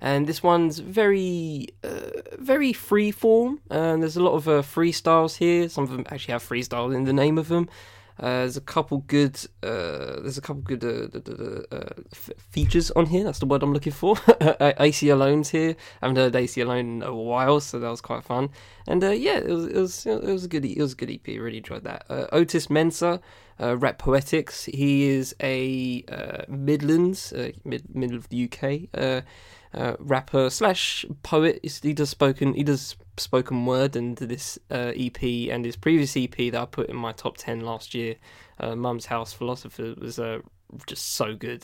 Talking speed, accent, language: 200 wpm, British, English